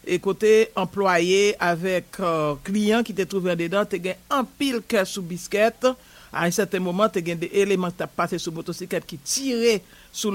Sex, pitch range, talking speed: male, 175-210 Hz, 180 wpm